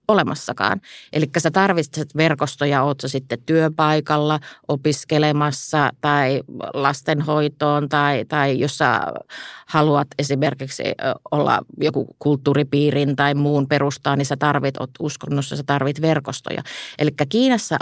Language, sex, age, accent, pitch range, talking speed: Finnish, female, 30-49, native, 140-155 Hz, 110 wpm